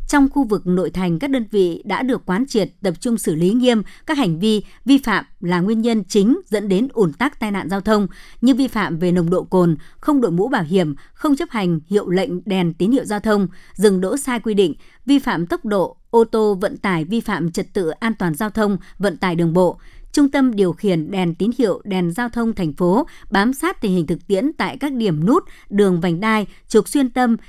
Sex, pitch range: male, 180-245 Hz